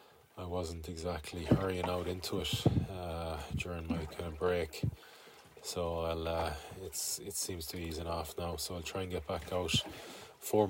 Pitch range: 85-95 Hz